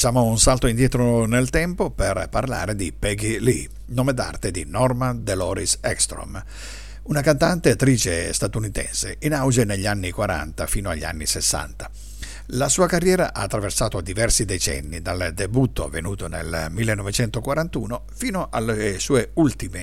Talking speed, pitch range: 140 wpm, 90-125 Hz